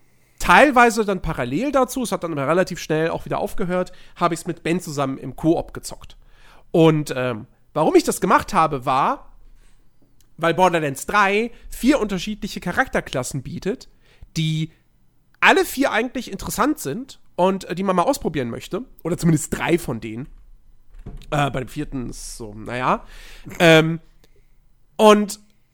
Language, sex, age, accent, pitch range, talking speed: German, male, 40-59, German, 145-200 Hz, 150 wpm